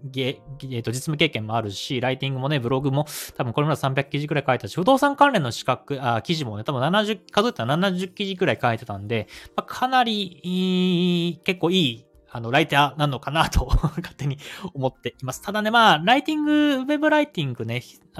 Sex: male